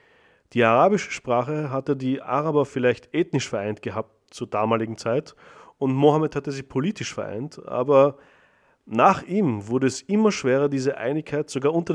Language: German